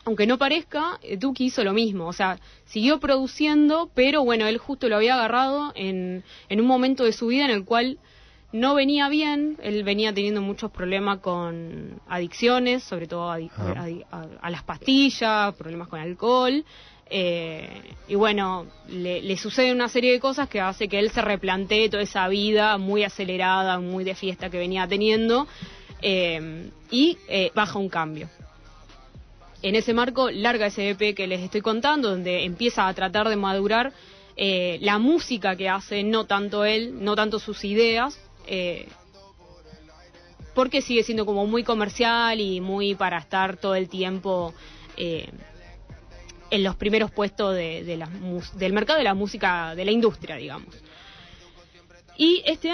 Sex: female